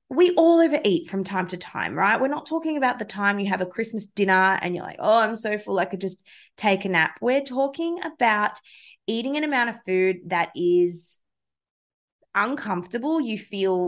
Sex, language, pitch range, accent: female, English, 185-250 Hz, Australian